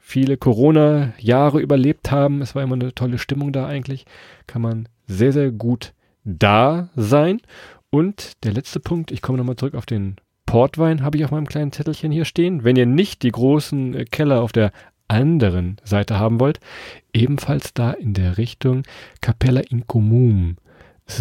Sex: male